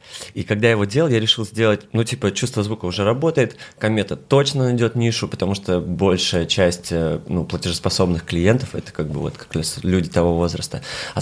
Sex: male